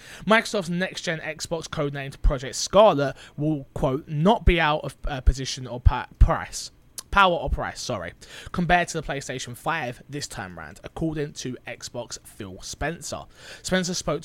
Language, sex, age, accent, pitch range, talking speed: English, male, 20-39, British, 130-170 Hz, 150 wpm